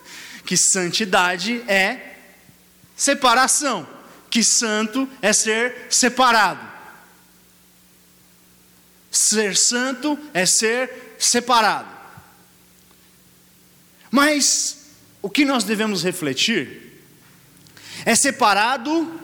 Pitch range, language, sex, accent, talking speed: 150-250 Hz, Portuguese, male, Brazilian, 70 wpm